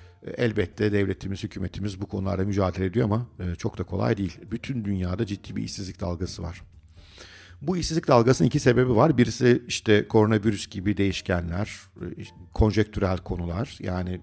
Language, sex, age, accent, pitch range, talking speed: Turkish, male, 50-69, native, 95-115 Hz, 140 wpm